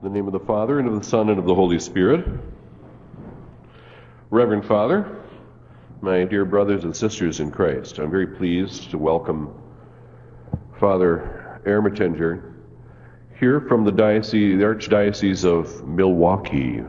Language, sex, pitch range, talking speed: English, male, 85-115 Hz, 140 wpm